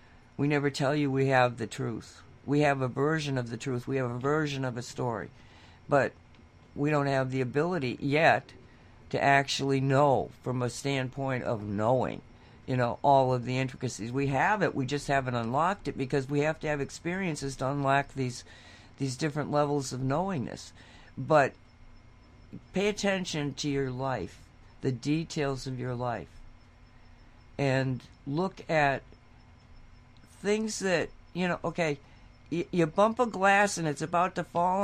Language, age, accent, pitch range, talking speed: English, 60-79, American, 120-165 Hz, 160 wpm